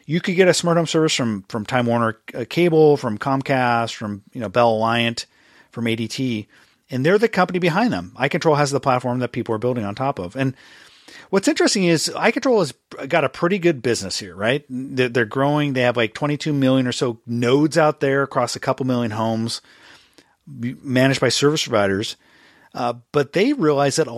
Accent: American